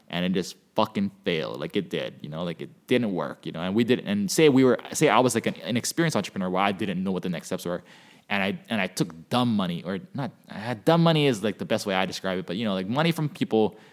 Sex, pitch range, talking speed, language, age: male, 95-130 Hz, 295 wpm, English, 20-39